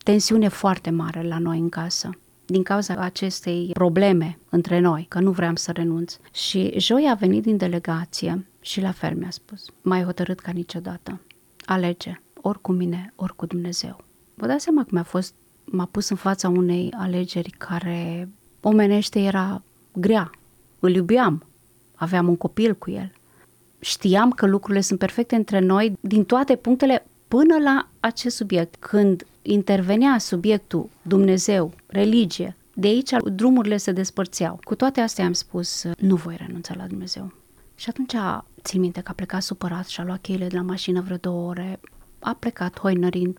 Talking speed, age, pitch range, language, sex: 165 wpm, 30-49, 175-205 Hz, Romanian, female